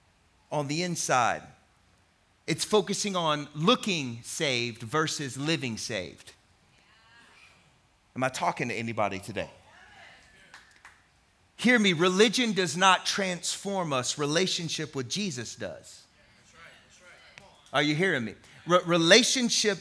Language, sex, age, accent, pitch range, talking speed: English, male, 40-59, American, 130-180 Hz, 105 wpm